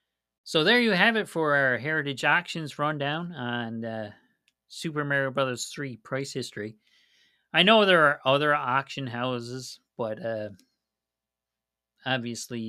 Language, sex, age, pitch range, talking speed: English, male, 40-59, 115-180 Hz, 130 wpm